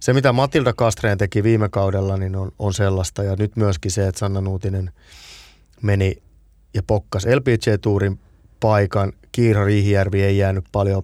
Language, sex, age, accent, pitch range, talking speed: Finnish, male, 20-39, native, 95-120 Hz, 145 wpm